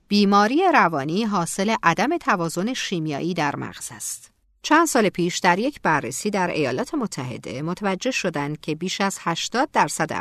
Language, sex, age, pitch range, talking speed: Persian, female, 50-69, 145-225 Hz, 145 wpm